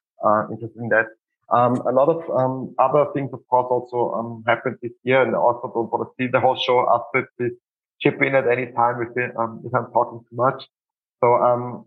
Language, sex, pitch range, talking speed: English, male, 115-125 Hz, 225 wpm